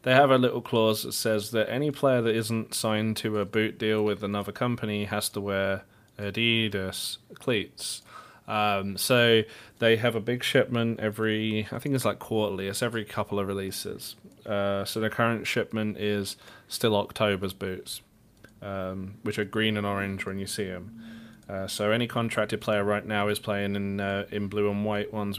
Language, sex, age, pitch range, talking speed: English, male, 20-39, 100-110 Hz, 185 wpm